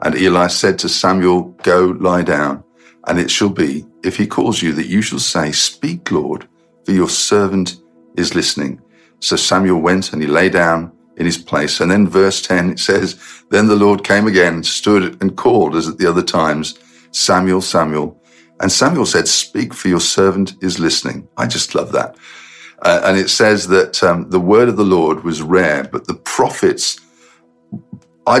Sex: male